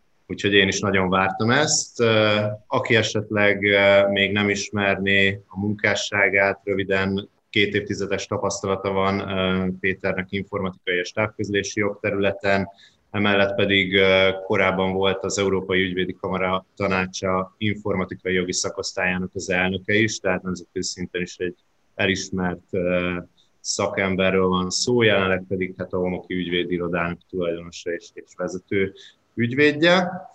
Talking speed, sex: 115 wpm, male